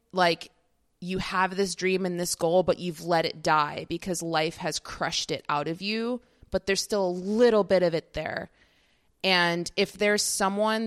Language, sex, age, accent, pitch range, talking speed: English, female, 20-39, American, 170-205 Hz, 190 wpm